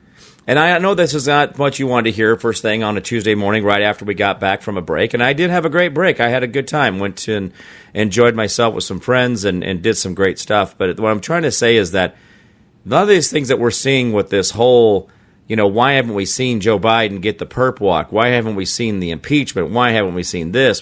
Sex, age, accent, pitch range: male, 40-59, American, 100-130 Hz